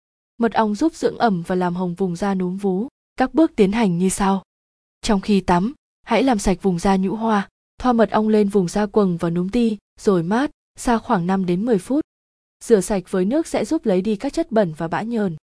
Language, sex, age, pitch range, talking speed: Vietnamese, female, 20-39, 190-230 Hz, 230 wpm